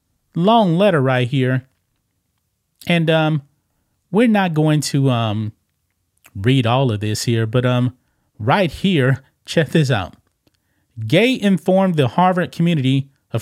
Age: 30-49